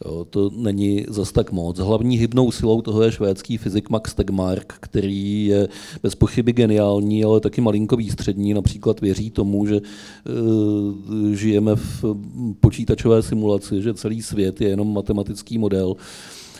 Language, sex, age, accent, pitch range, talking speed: Czech, male, 40-59, native, 105-130 Hz, 135 wpm